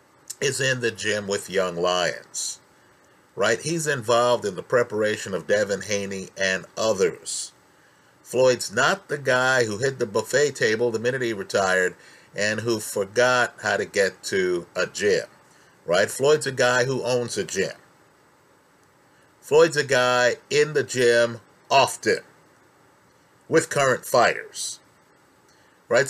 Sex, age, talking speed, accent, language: male, 50-69, 135 wpm, American, English